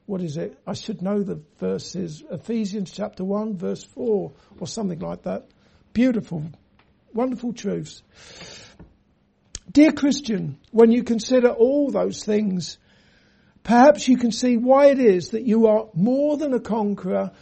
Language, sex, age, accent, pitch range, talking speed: English, male, 60-79, British, 195-245 Hz, 145 wpm